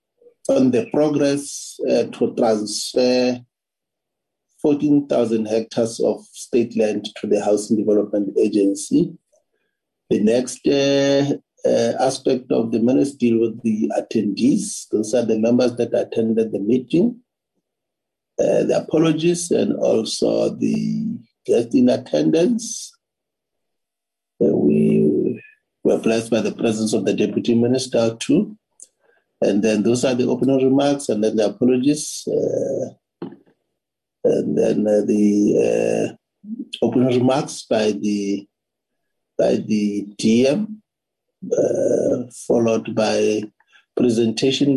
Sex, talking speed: male, 115 wpm